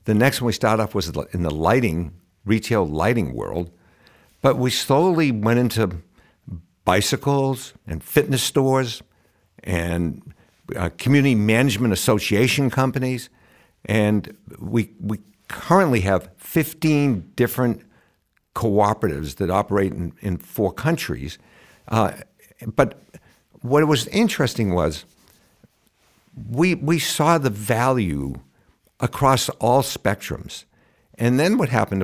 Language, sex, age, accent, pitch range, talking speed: English, male, 60-79, American, 90-130 Hz, 110 wpm